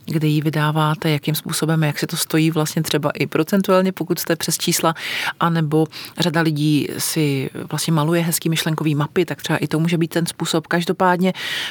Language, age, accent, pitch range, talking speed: Czech, 40-59, native, 150-170 Hz, 180 wpm